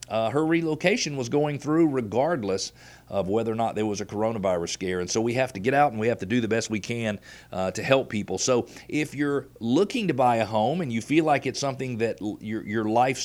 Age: 40-59